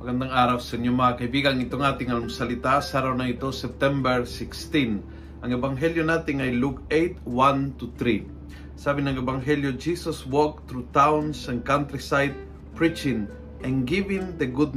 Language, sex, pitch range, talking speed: Filipino, male, 120-155 Hz, 140 wpm